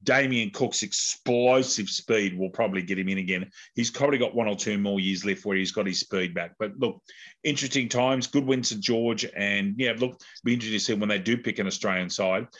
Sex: male